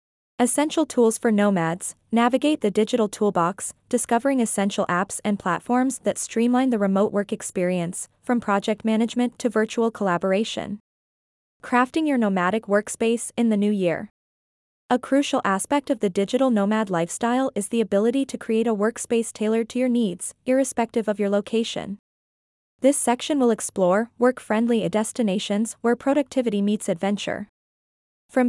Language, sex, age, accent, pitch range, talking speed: English, female, 20-39, American, 205-250 Hz, 145 wpm